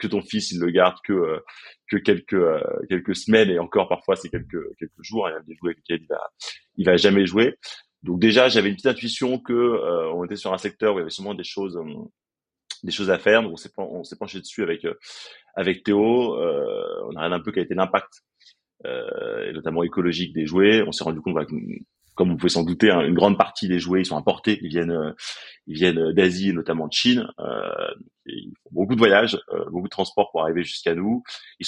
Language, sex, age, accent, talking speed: French, male, 30-49, French, 210 wpm